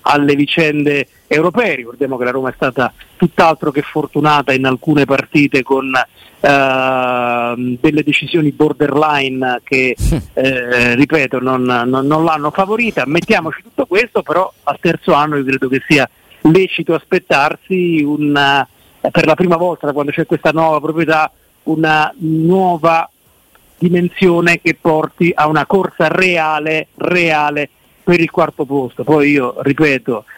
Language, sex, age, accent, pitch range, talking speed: Italian, male, 40-59, native, 140-165 Hz, 130 wpm